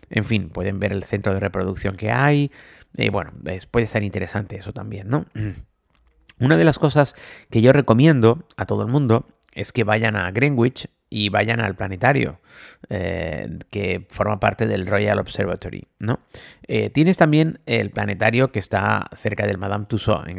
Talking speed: 170 wpm